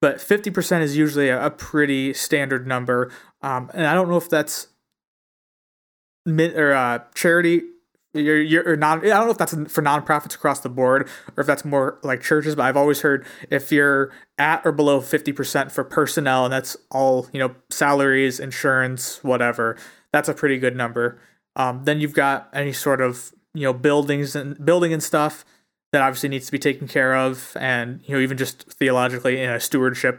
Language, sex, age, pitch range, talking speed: English, male, 20-39, 130-155 Hz, 190 wpm